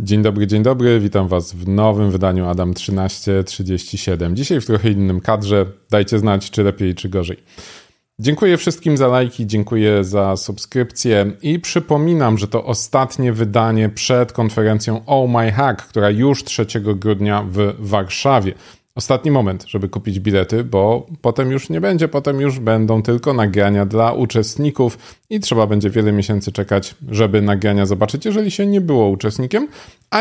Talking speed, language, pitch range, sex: 155 wpm, Polish, 100-130 Hz, male